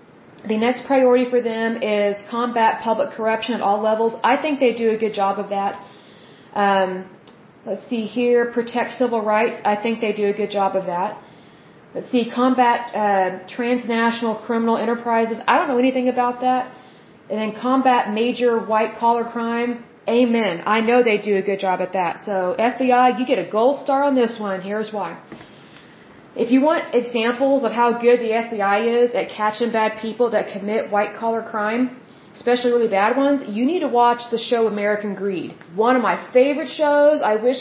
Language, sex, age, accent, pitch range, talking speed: Bengali, female, 30-49, American, 215-245 Hz, 185 wpm